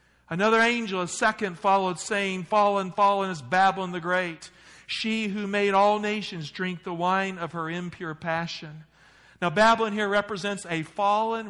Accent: American